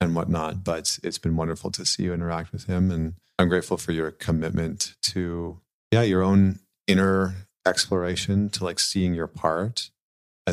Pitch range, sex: 85-110 Hz, male